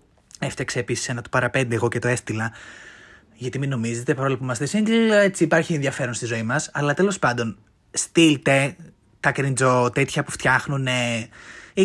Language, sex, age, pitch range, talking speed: Greek, male, 20-39, 125-170 Hz, 160 wpm